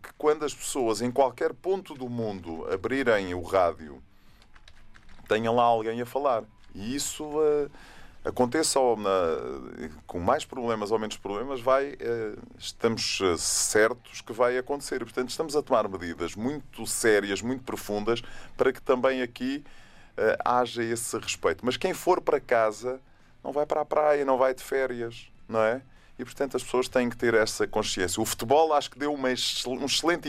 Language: Portuguese